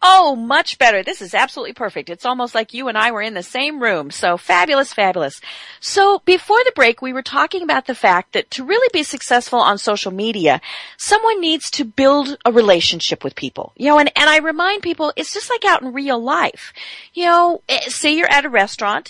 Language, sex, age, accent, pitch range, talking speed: English, female, 40-59, American, 235-320 Hz, 215 wpm